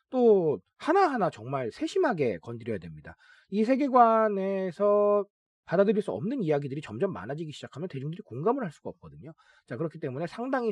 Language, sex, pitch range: Korean, male, 140-220 Hz